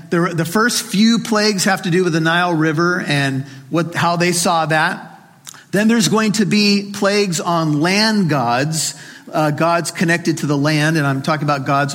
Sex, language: male, English